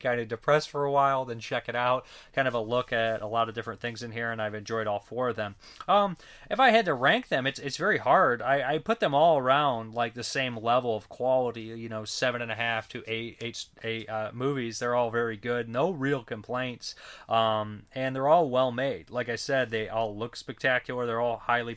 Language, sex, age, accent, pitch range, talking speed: English, male, 30-49, American, 115-140 Hz, 240 wpm